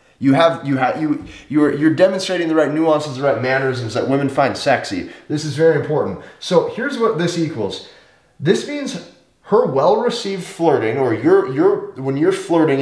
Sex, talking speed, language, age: male, 180 wpm, English, 30-49